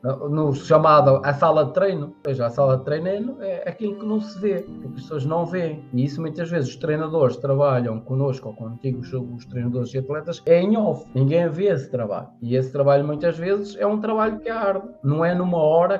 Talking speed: 225 wpm